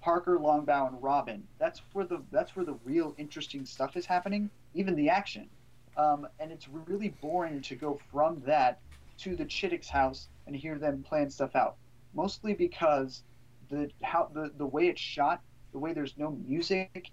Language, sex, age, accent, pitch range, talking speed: English, male, 30-49, American, 130-175 Hz, 170 wpm